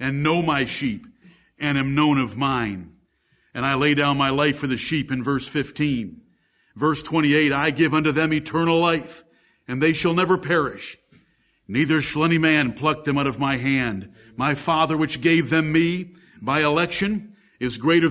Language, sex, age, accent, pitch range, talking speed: English, male, 50-69, American, 140-190 Hz, 180 wpm